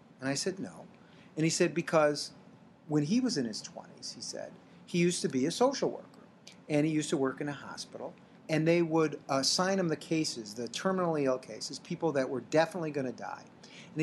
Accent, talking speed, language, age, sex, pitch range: American, 215 wpm, English, 40-59, male, 130-185 Hz